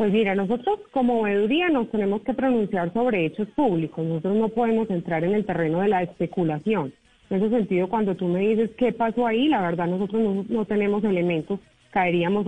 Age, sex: 30-49, female